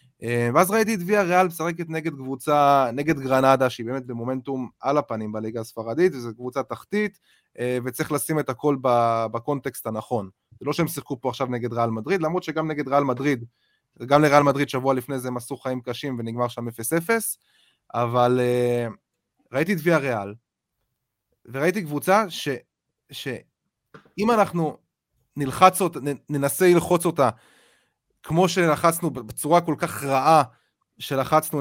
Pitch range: 125-160 Hz